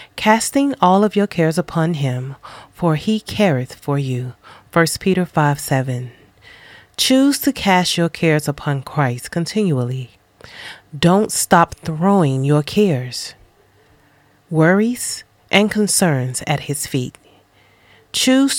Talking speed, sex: 115 wpm, female